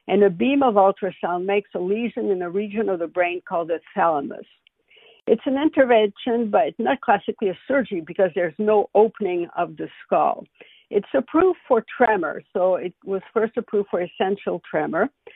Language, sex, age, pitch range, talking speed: English, female, 60-79, 180-235 Hz, 175 wpm